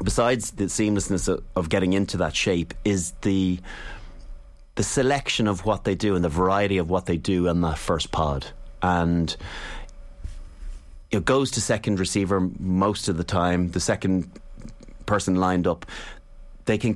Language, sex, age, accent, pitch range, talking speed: English, male, 30-49, Irish, 90-110 Hz, 155 wpm